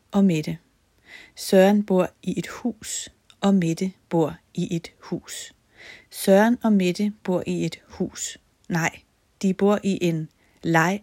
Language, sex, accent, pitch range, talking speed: Danish, female, native, 175-205 Hz, 140 wpm